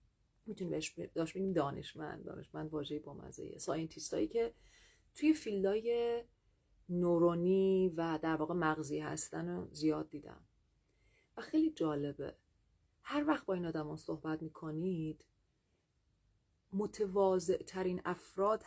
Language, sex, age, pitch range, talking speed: Persian, female, 30-49, 155-210 Hz, 105 wpm